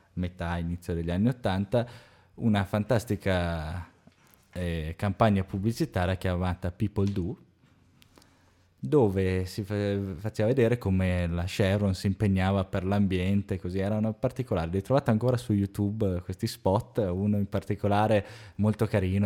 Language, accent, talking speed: Italian, native, 120 wpm